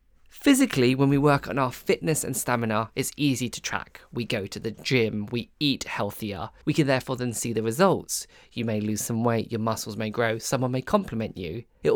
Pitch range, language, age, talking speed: 115-145 Hz, English, 20-39, 210 wpm